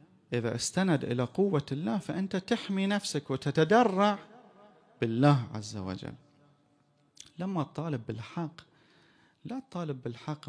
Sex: male